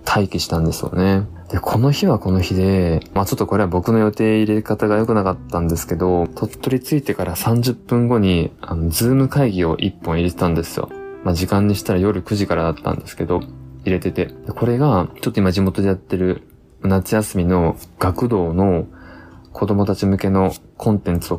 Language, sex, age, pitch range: Japanese, male, 20-39, 85-105 Hz